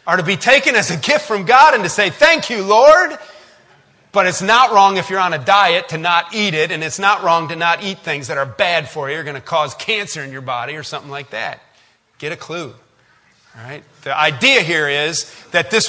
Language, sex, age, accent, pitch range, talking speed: English, male, 40-59, American, 140-180 Hz, 245 wpm